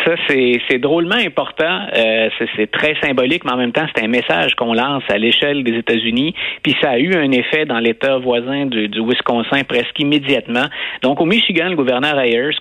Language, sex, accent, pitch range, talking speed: French, male, Canadian, 115-155 Hz, 205 wpm